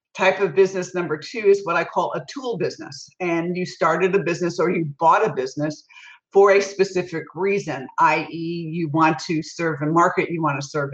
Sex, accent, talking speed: female, American, 205 wpm